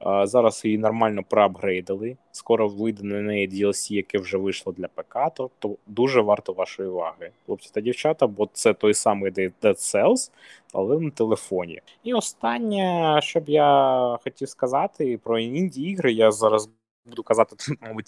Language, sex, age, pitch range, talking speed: Ukrainian, male, 20-39, 105-155 Hz, 155 wpm